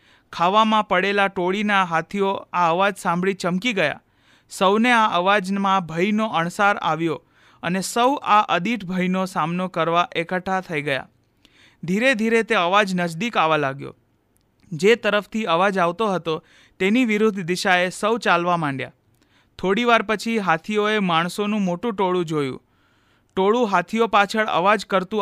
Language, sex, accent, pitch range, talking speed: Gujarati, male, native, 170-210 Hz, 130 wpm